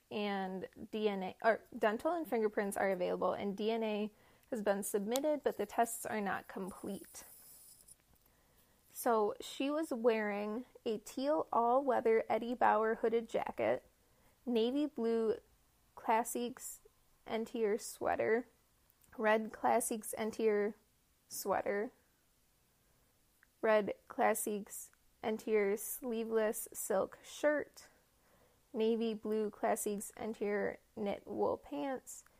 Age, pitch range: 20-39, 215-260 Hz